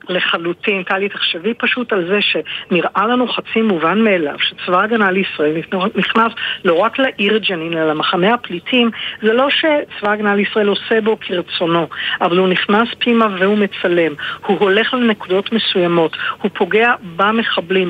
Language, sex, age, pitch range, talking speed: Hebrew, female, 50-69, 180-225 Hz, 150 wpm